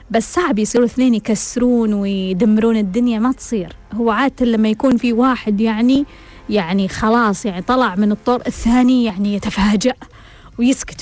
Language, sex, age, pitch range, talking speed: Arabic, female, 20-39, 220-275 Hz, 140 wpm